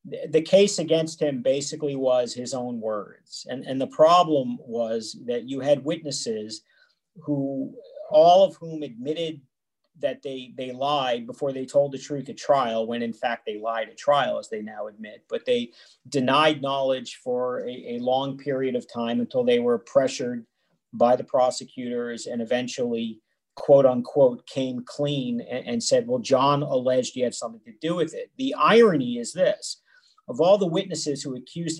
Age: 40-59